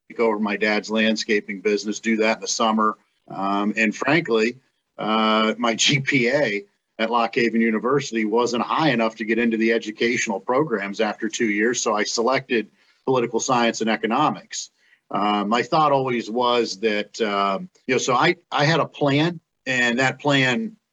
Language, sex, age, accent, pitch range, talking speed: English, male, 50-69, American, 105-120 Hz, 160 wpm